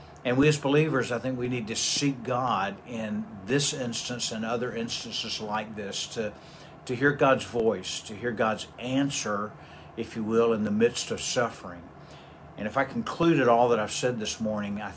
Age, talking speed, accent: 50-69, 190 wpm, American